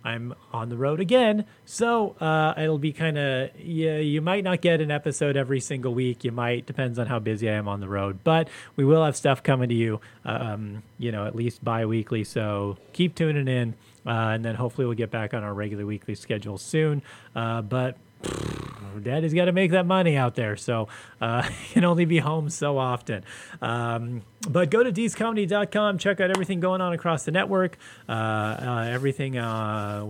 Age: 30-49